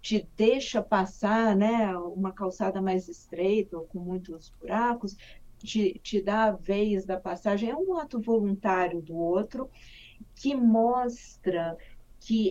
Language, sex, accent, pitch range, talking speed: Portuguese, female, Brazilian, 180-220 Hz, 135 wpm